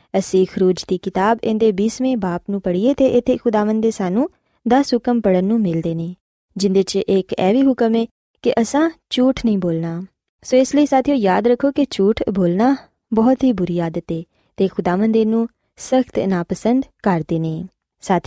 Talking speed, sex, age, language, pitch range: 150 wpm, female, 20-39, Punjabi, 185-255 Hz